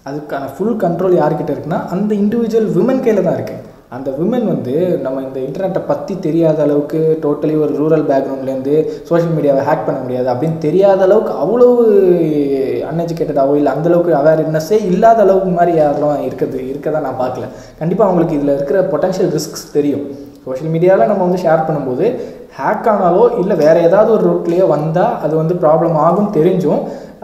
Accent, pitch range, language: native, 140-190 Hz, Tamil